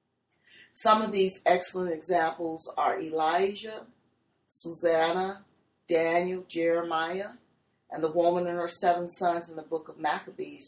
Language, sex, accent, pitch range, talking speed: English, female, American, 165-195 Hz, 125 wpm